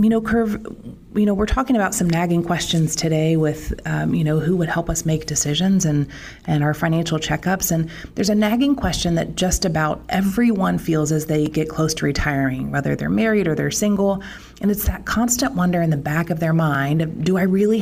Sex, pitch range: female, 155-225 Hz